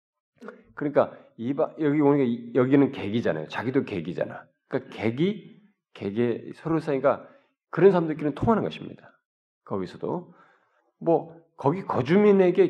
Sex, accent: male, native